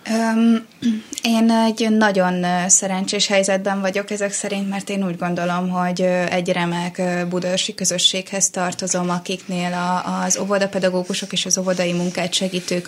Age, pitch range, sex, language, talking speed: 20-39, 185-205 Hz, female, Hungarian, 120 wpm